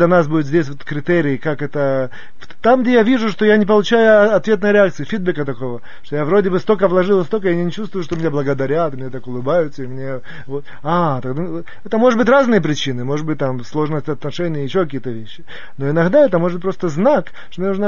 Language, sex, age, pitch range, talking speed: Russian, male, 30-49, 140-190 Hz, 215 wpm